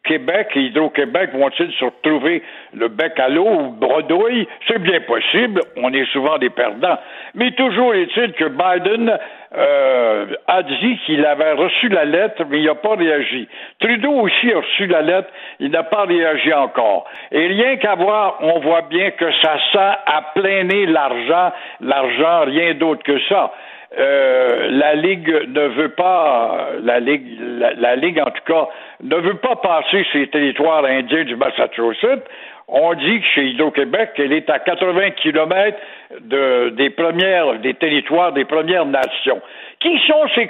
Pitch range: 150-210 Hz